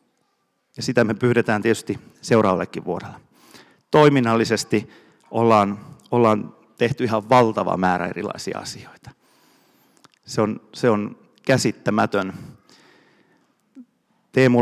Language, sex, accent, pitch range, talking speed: Finnish, male, native, 105-130 Hz, 90 wpm